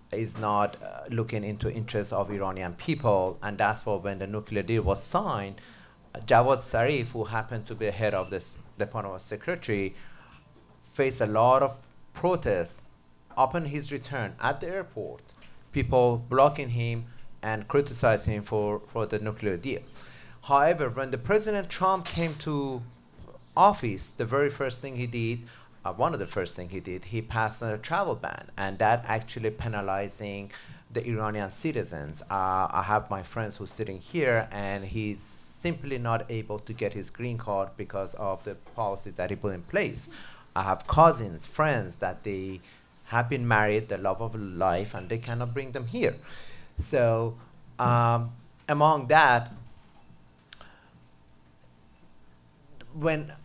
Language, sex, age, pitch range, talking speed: English, male, 30-49, 100-135 Hz, 155 wpm